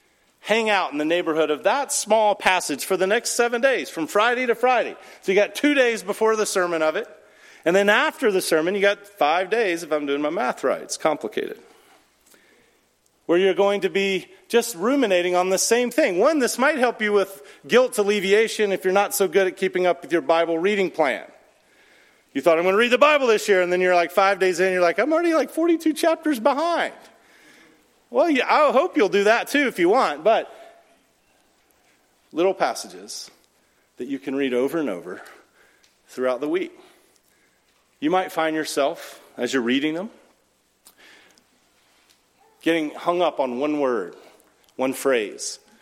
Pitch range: 160-250 Hz